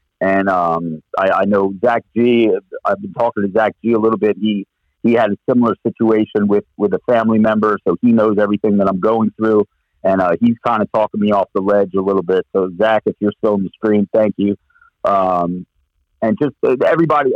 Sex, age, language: male, 50-69, English